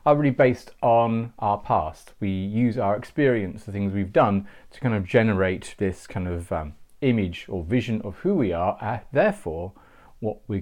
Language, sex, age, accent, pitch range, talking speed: English, male, 40-59, British, 100-125 Hz, 185 wpm